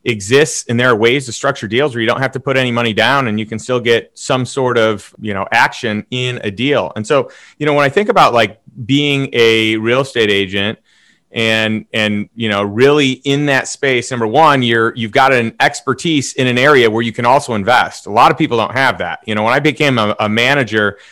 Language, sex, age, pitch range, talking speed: English, male, 30-49, 110-135 Hz, 235 wpm